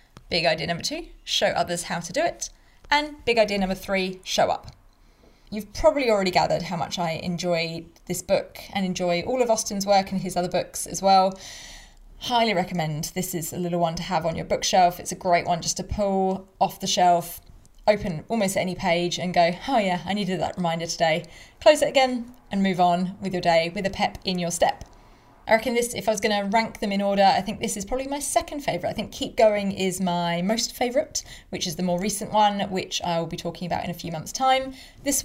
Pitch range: 175-220 Hz